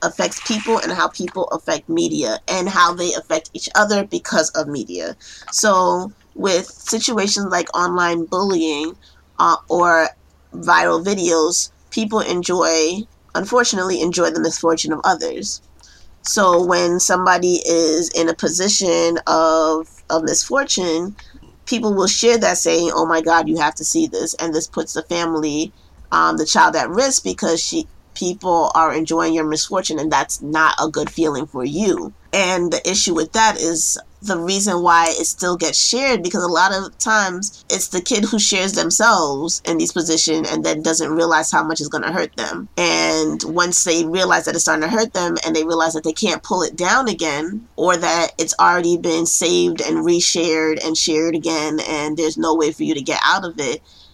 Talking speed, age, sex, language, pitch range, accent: 180 wpm, 20-39, female, English, 160-185 Hz, American